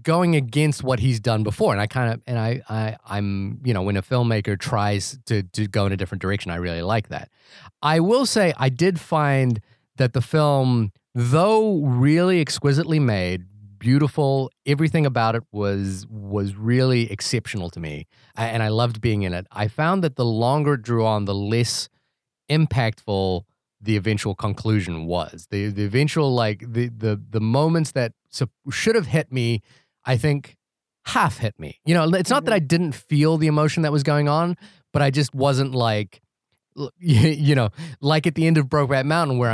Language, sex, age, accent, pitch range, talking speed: English, male, 30-49, American, 110-150 Hz, 190 wpm